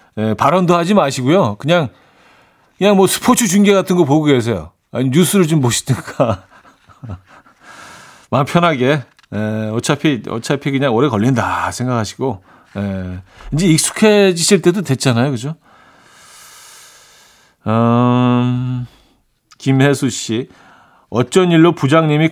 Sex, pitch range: male, 110-155 Hz